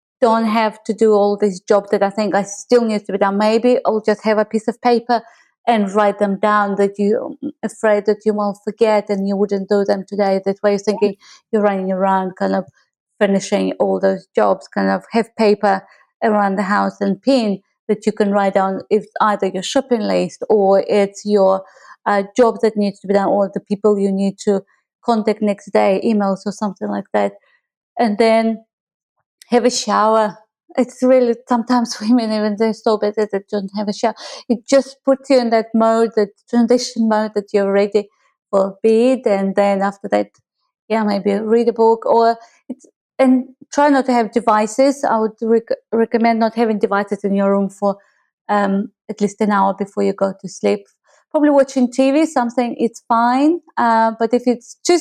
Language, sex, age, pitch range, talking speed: English, female, 30-49, 200-240 Hz, 195 wpm